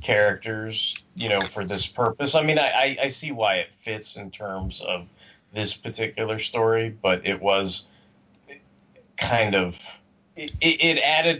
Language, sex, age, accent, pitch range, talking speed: English, male, 30-49, American, 95-125 Hz, 145 wpm